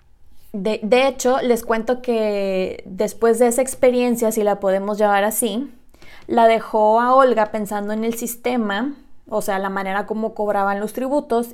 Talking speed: 160 wpm